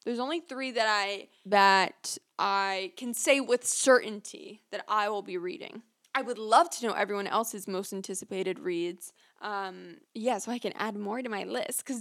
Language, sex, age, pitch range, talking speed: English, female, 10-29, 215-295 Hz, 185 wpm